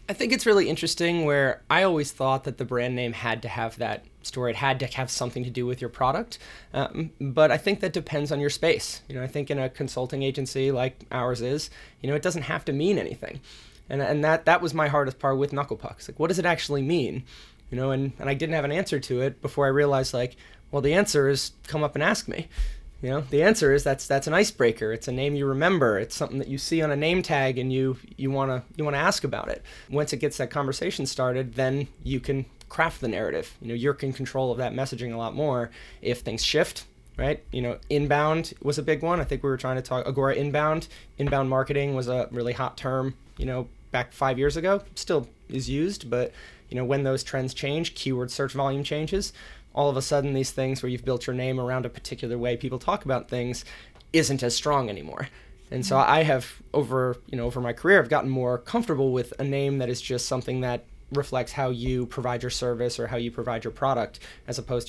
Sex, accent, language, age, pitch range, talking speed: male, American, English, 20-39, 125-145 Hz, 240 wpm